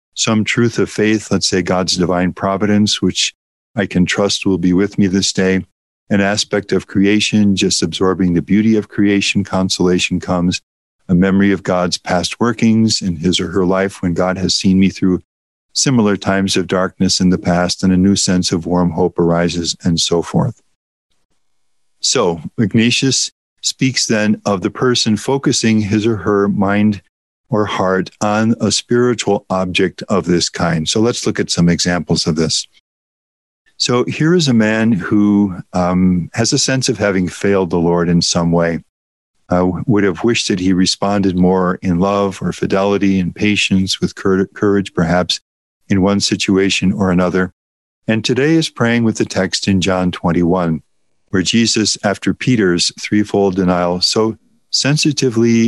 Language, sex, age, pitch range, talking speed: English, male, 50-69, 90-105 Hz, 165 wpm